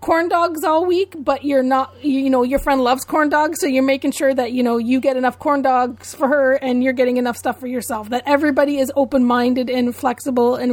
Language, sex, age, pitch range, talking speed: English, female, 30-49, 235-275 Hz, 235 wpm